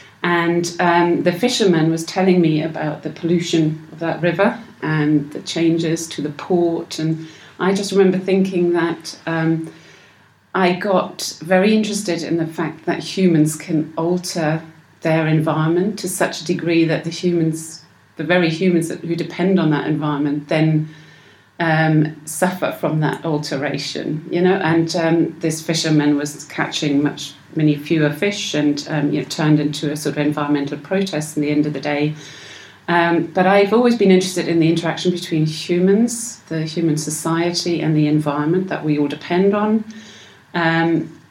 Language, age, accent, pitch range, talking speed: English, 40-59, British, 155-175 Hz, 165 wpm